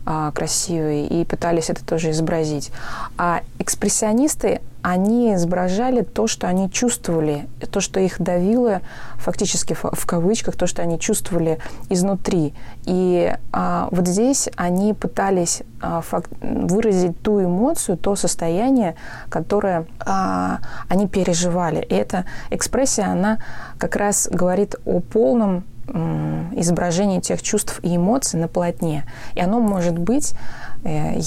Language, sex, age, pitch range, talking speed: Russian, female, 20-39, 165-205 Hz, 120 wpm